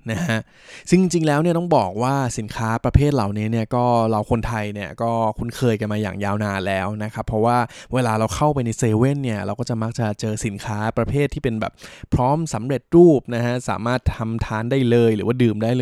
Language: Thai